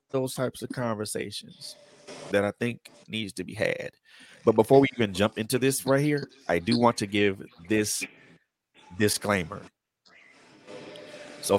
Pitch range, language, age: 100-125 Hz, English, 30-49